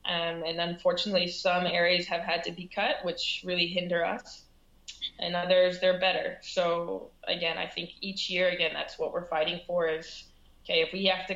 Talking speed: 190 wpm